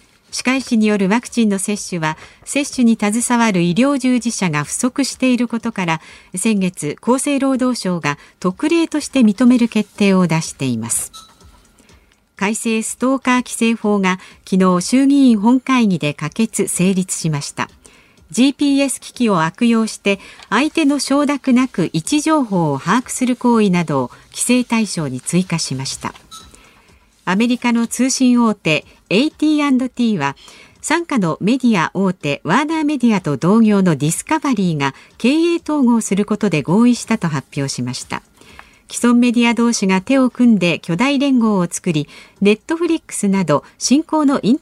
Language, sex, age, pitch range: Japanese, female, 50-69, 180-255 Hz